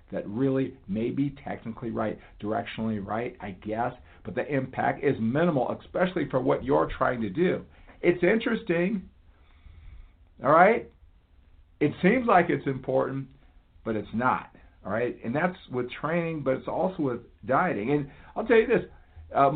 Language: English